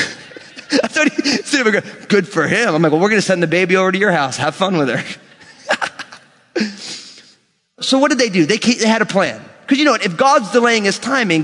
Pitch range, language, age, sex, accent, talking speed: 155-215 Hz, English, 30-49, male, American, 215 wpm